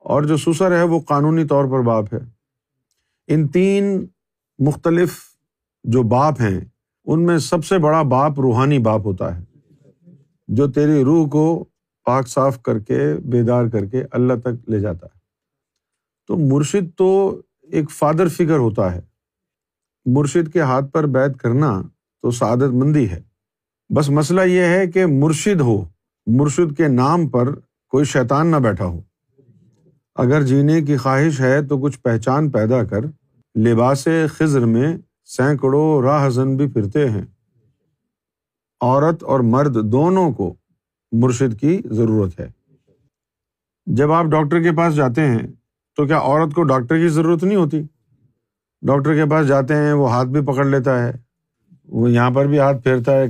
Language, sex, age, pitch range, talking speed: Urdu, male, 50-69, 120-155 Hz, 155 wpm